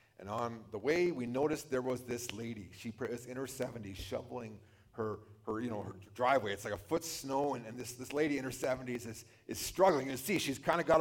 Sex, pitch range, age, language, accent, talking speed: male, 105-150 Hz, 40-59, English, American, 240 wpm